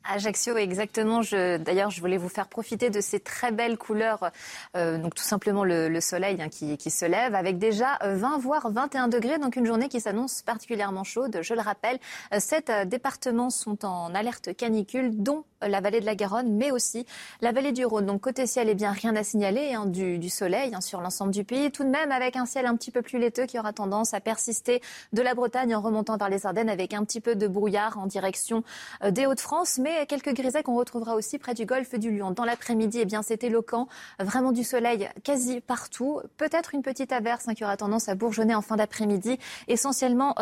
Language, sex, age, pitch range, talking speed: French, female, 30-49, 205-255 Hz, 220 wpm